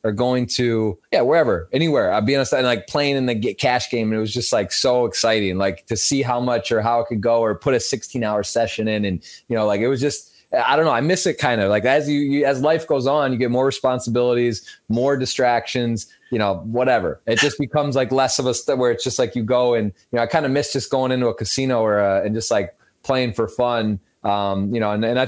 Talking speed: 265 wpm